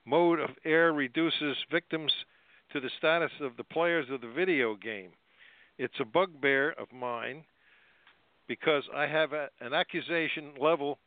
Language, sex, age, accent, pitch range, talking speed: English, male, 60-79, American, 130-155 Hz, 140 wpm